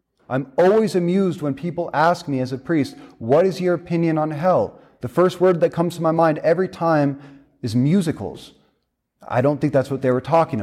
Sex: male